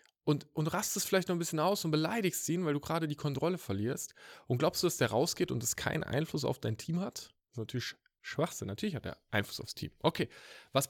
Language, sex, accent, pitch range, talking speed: German, male, German, 115-165 Hz, 235 wpm